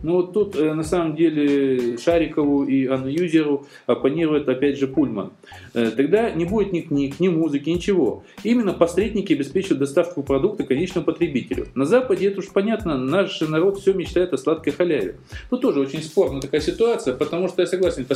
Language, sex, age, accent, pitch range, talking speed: Russian, male, 20-39, native, 140-185 Hz, 175 wpm